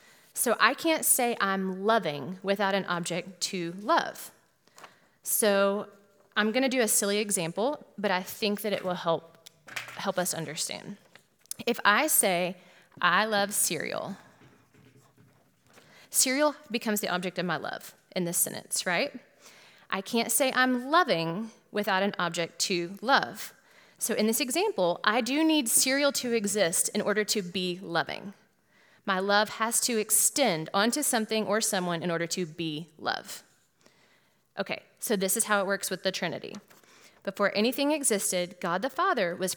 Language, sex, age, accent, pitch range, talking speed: English, female, 30-49, American, 185-235 Hz, 155 wpm